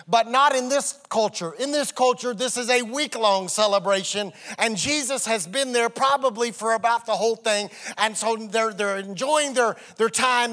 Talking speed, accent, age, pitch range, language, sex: 180 wpm, American, 40-59, 195-245 Hz, English, male